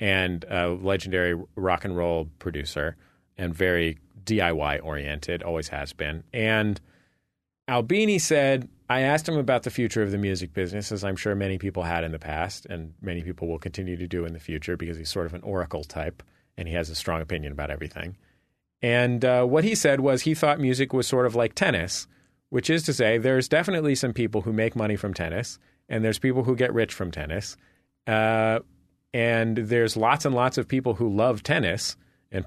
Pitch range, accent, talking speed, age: 90-125 Hz, American, 200 wpm, 30-49